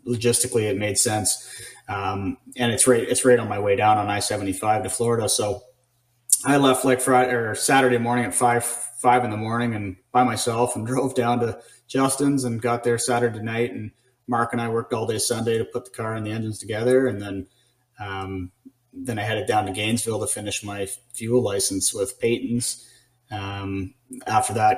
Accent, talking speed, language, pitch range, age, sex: American, 195 wpm, English, 105-125 Hz, 30-49, male